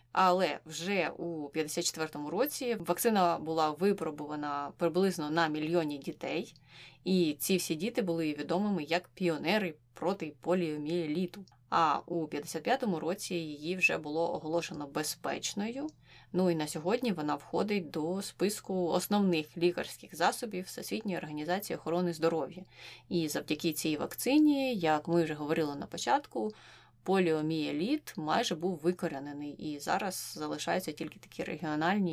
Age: 20-39